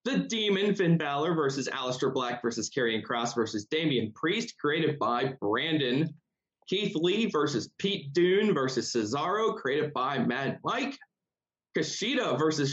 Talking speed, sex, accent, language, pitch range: 135 wpm, male, American, English, 135-185 Hz